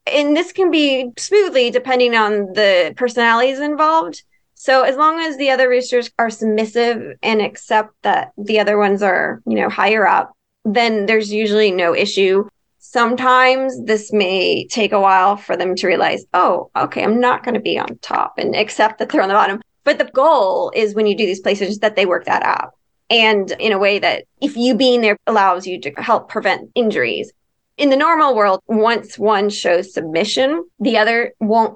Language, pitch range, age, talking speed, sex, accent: English, 210-260 Hz, 20-39, 190 wpm, female, American